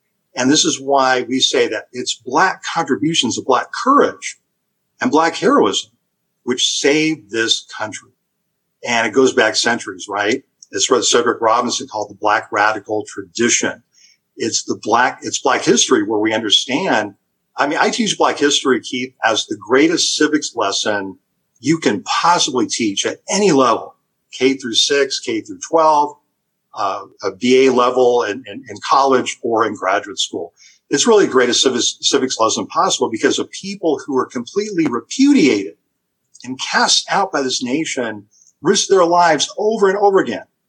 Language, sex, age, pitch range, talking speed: English, male, 50-69, 140-205 Hz, 160 wpm